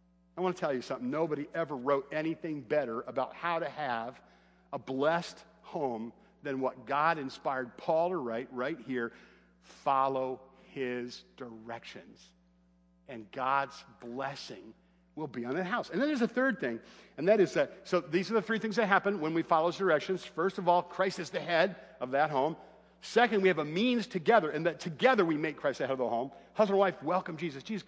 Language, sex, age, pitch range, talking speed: English, male, 50-69, 150-215 Hz, 200 wpm